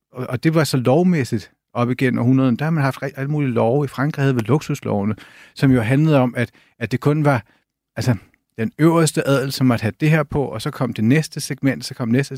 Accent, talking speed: native, 240 wpm